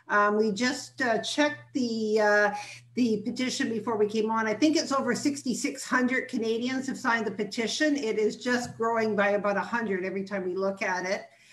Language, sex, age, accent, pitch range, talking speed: English, female, 50-69, American, 195-230 Hz, 185 wpm